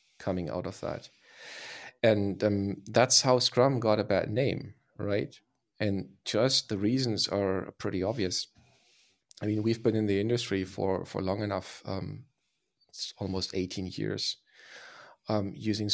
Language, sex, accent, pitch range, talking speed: English, male, German, 100-120 Hz, 145 wpm